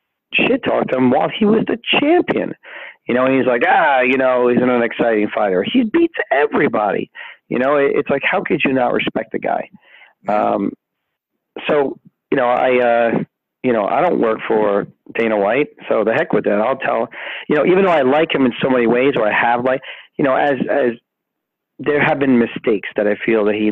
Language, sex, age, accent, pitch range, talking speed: English, male, 40-59, American, 105-125 Hz, 215 wpm